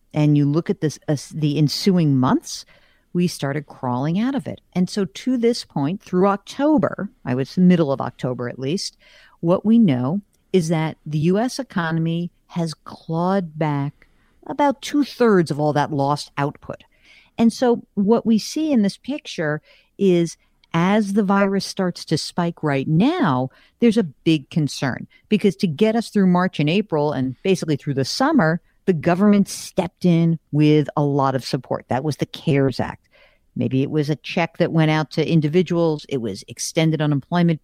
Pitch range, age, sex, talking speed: 140-190 Hz, 50-69, female, 175 wpm